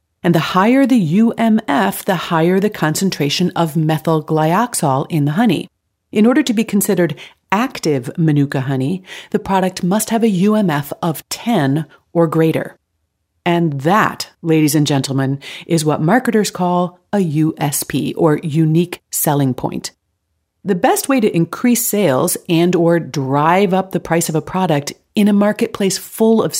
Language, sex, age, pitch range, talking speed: English, female, 40-59, 160-220 Hz, 155 wpm